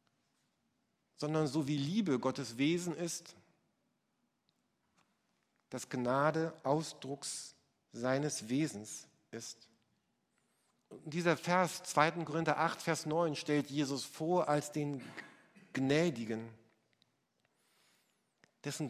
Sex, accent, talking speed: male, German, 90 wpm